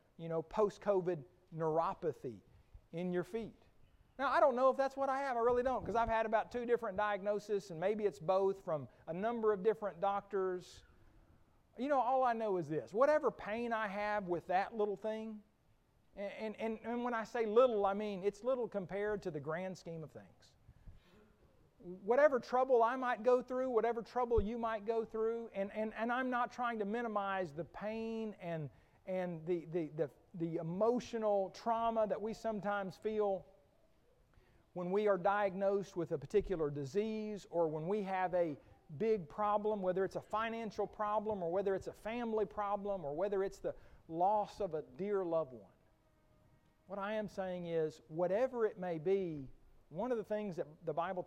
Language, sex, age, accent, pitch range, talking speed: English, male, 40-59, American, 175-220 Hz, 180 wpm